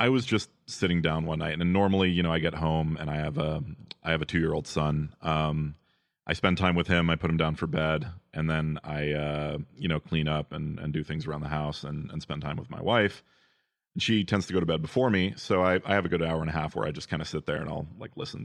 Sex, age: male, 30-49